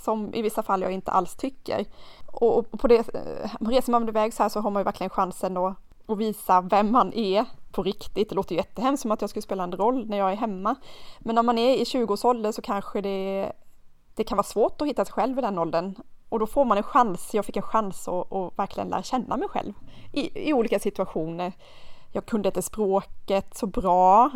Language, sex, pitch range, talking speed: Swedish, female, 195-235 Hz, 225 wpm